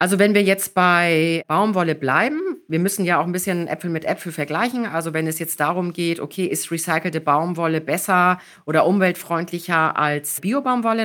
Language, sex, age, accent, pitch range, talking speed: German, female, 40-59, German, 165-200 Hz, 175 wpm